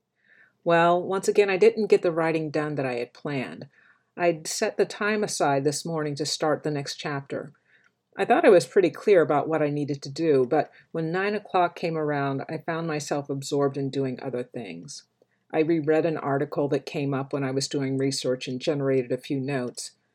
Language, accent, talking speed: English, American, 205 wpm